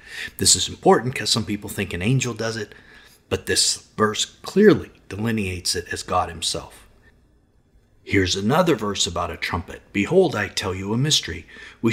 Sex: male